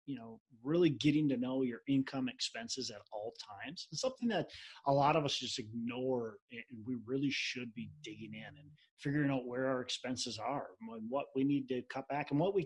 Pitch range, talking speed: 115-145 Hz, 210 wpm